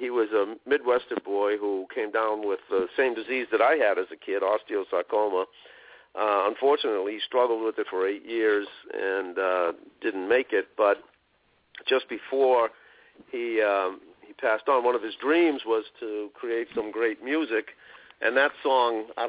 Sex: male